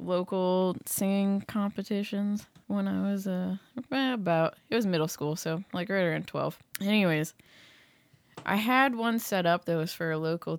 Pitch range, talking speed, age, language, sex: 155-195 Hz, 160 wpm, 20-39, English, female